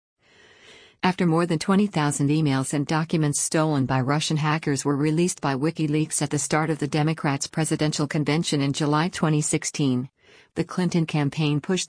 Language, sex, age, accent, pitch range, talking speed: English, female, 50-69, American, 145-165 Hz, 150 wpm